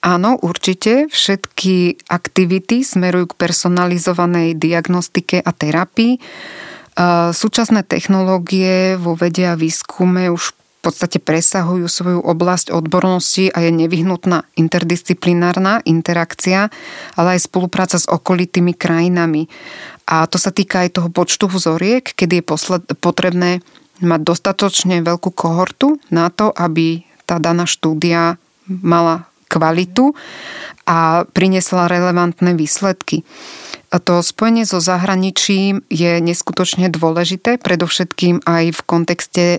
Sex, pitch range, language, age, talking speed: female, 170-190 Hz, Slovak, 30-49, 110 wpm